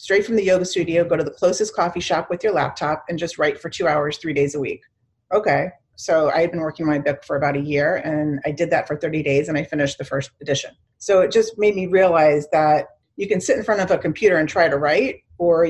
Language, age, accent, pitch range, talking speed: English, 30-49, American, 150-180 Hz, 270 wpm